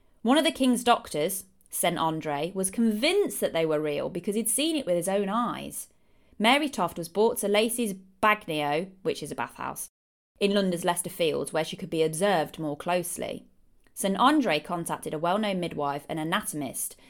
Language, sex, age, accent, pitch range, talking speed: English, female, 20-39, British, 155-215 Hz, 180 wpm